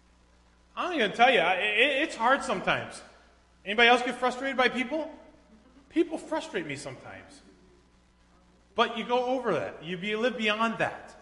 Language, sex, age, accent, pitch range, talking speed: English, male, 30-49, American, 185-260 Hz, 145 wpm